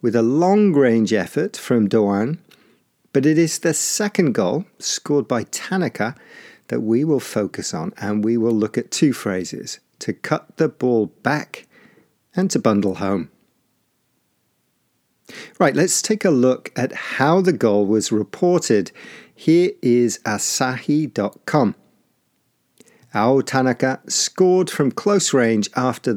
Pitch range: 115-165 Hz